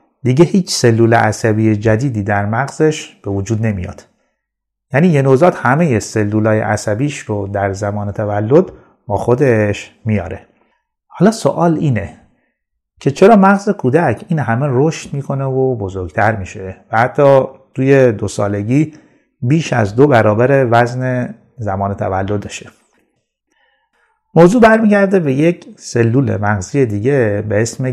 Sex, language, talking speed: male, Persian, 125 wpm